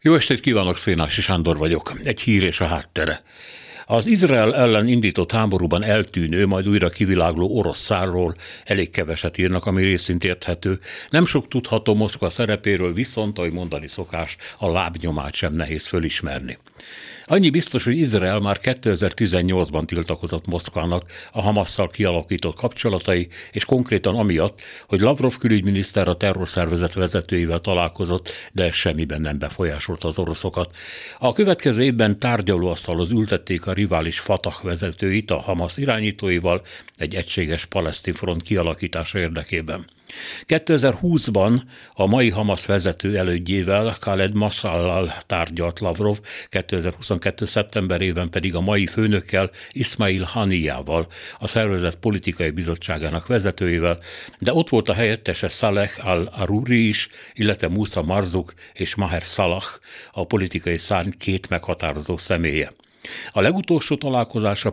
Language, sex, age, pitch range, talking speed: Hungarian, male, 60-79, 85-105 Hz, 125 wpm